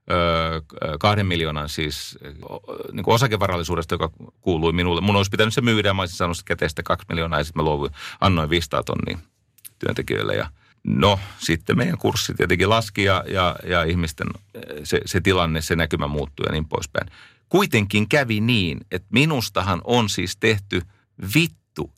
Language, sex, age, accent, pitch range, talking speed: Finnish, male, 40-59, native, 90-115 Hz, 150 wpm